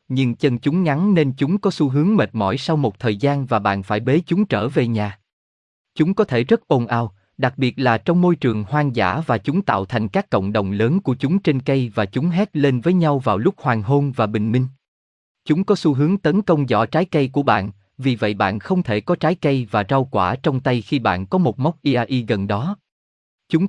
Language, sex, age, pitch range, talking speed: Vietnamese, male, 20-39, 110-155 Hz, 240 wpm